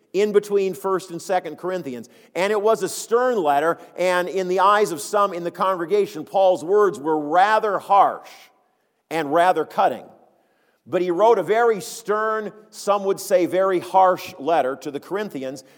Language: English